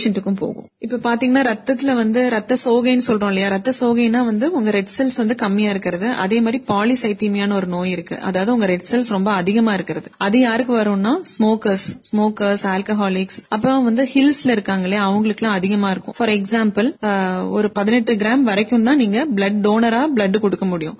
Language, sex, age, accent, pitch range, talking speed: Tamil, female, 30-49, native, 200-240 Hz, 155 wpm